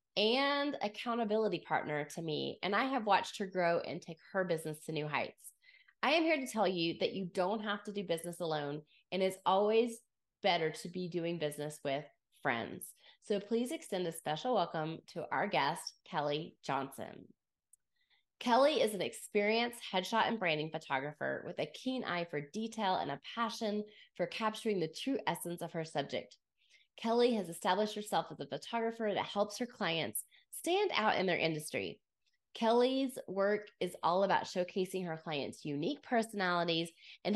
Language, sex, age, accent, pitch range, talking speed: English, female, 20-39, American, 160-230 Hz, 170 wpm